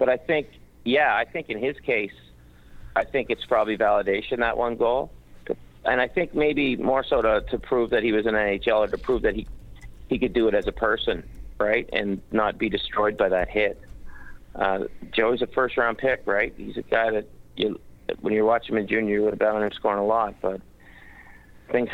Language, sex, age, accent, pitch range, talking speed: English, male, 50-69, American, 95-120 Hz, 210 wpm